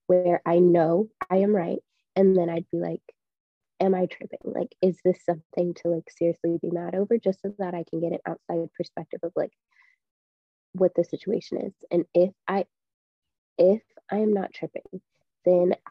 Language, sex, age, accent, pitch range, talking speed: English, female, 20-39, American, 170-190 Hz, 180 wpm